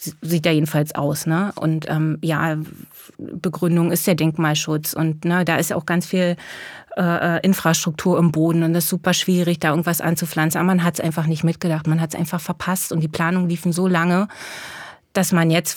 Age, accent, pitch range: 30-49, German, 165-190 Hz